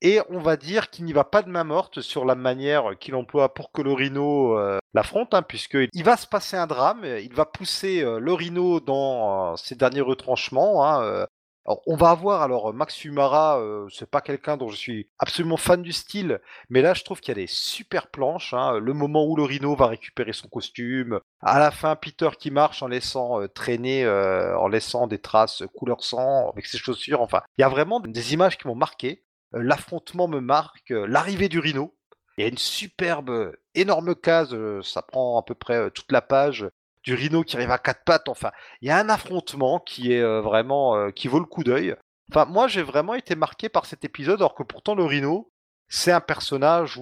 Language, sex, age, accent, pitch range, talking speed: French, male, 30-49, French, 130-170 Hz, 220 wpm